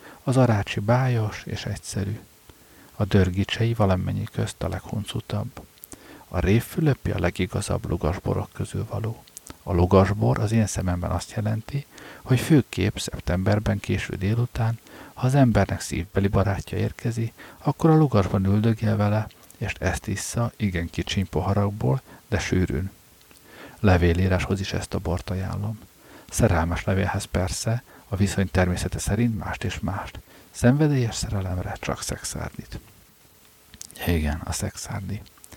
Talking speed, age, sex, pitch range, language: 120 wpm, 50-69, male, 95-115 Hz, Hungarian